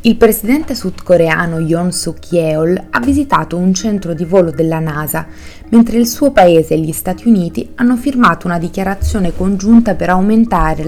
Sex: female